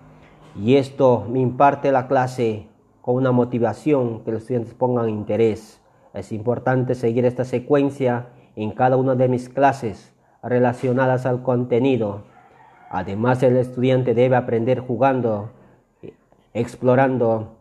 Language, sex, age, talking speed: Spanish, male, 40-59, 120 wpm